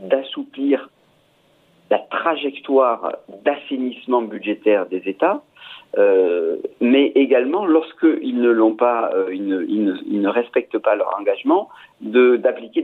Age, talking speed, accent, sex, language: 50-69, 115 wpm, French, male, French